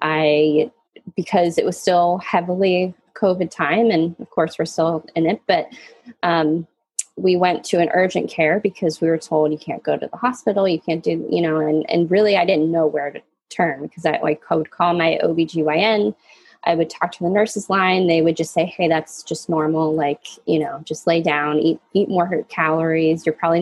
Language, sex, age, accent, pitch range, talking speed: English, female, 20-39, American, 165-210 Hz, 205 wpm